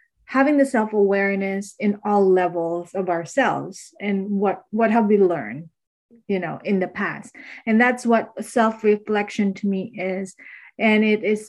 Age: 30-49